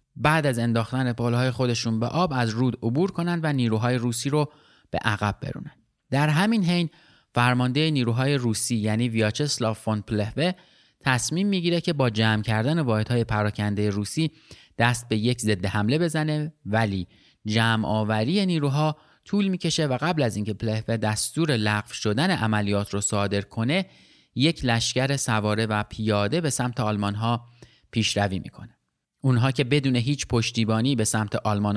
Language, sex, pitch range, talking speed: Persian, male, 110-155 Hz, 150 wpm